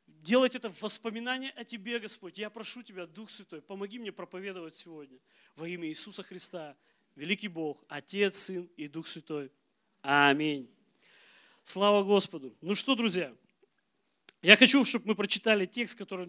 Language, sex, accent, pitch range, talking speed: Russian, male, native, 170-220 Hz, 145 wpm